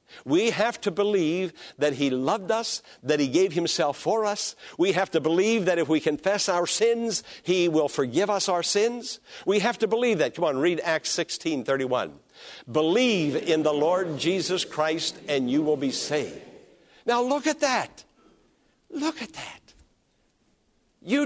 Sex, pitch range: male, 160-235 Hz